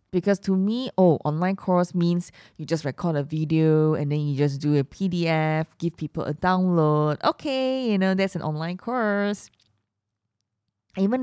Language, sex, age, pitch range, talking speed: English, female, 20-39, 150-195 Hz, 165 wpm